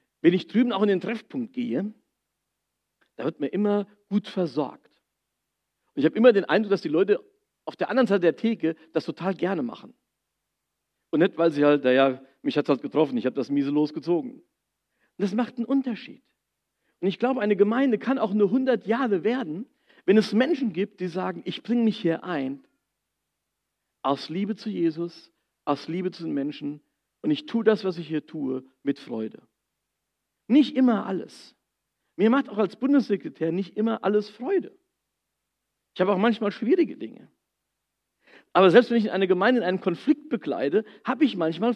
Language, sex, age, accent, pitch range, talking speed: German, male, 50-69, German, 150-235 Hz, 180 wpm